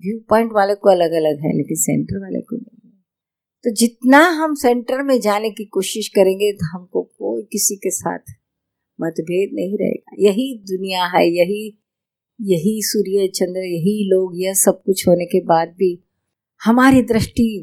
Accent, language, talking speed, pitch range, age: native, Hindi, 165 wpm, 175-225 Hz, 50-69